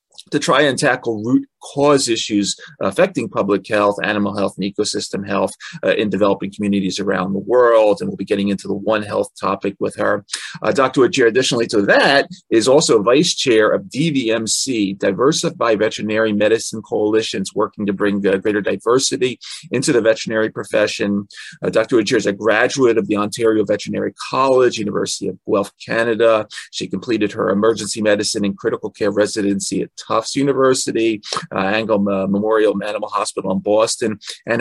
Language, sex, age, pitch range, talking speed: English, male, 30-49, 100-115 Hz, 165 wpm